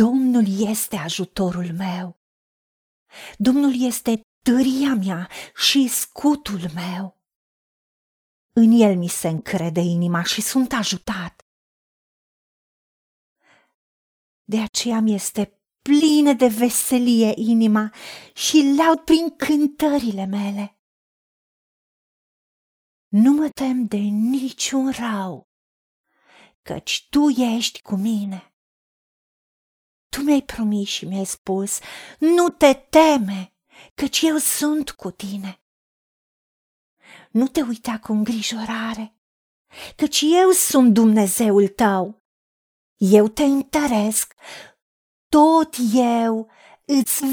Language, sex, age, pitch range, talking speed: Romanian, female, 40-59, 200-275 Hz, 95 wpm